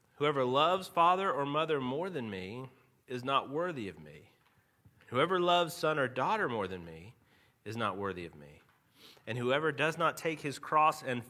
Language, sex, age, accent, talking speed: English, male, 30-49, American, 180 wpm